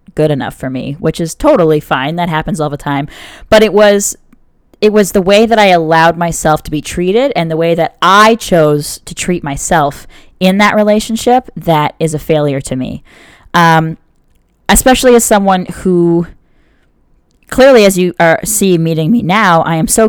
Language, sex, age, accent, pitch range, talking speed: English, female, 10-29, American, 155-200 Hz, 180 wpm